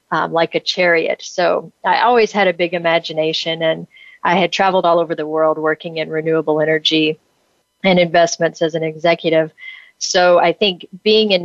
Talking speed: 175 wpm